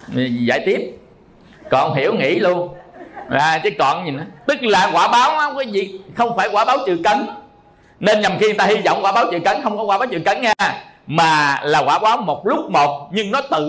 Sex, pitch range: male, 160-215 Hz